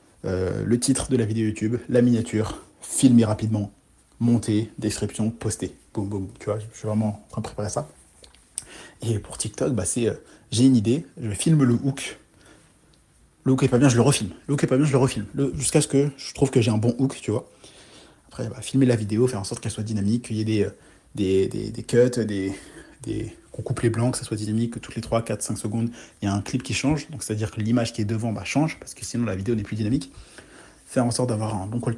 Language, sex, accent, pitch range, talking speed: French, male, French, 110-135 Hz, 245 wpm